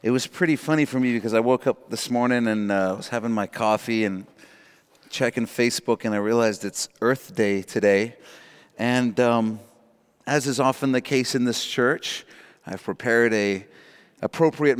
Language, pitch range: English, 125-165 Hz